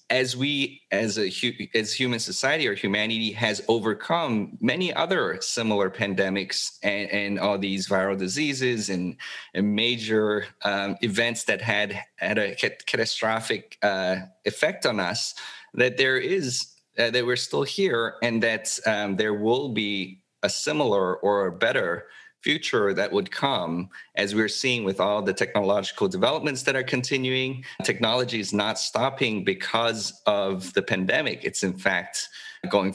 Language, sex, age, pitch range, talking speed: English, male, 30-49, 100-125 Hz, 145 wpm